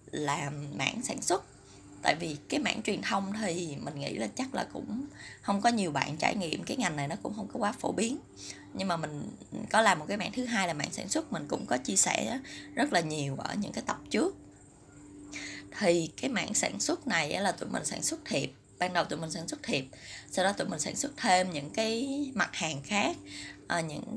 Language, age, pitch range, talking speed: Vietnamese, 20-39, 135-215 Hz, 230 wpm